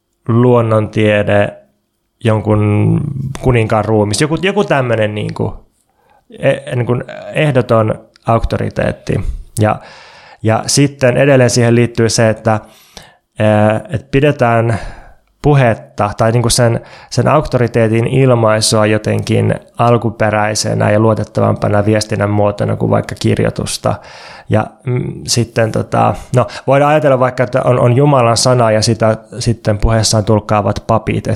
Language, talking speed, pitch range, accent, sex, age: Finnish, 110 wpm, 110-130 Hz, native, male, 20-39